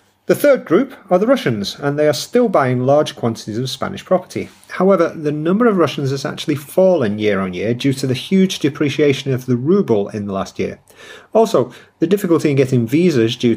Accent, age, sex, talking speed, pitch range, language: British, 40-59, male, 205 wpm, 115-160 Hz, English